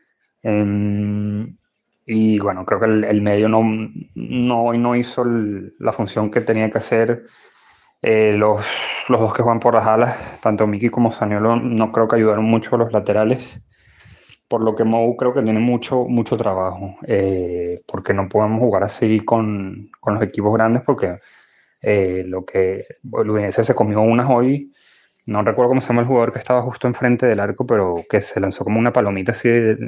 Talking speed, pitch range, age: 185 wpm, 105-120 Hz, 20-39